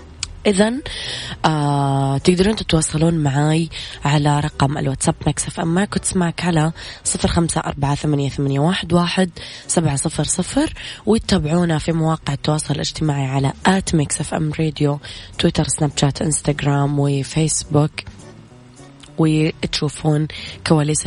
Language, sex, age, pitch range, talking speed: Arabic, female, 20-39, 140-165 Hz, 110 wpm